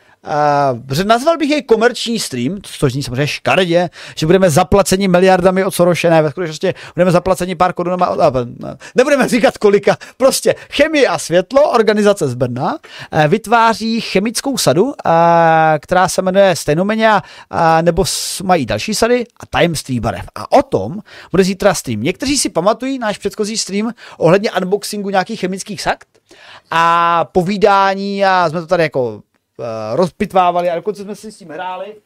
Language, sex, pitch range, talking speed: Czech, male, 175-230 Hz, 155 wpm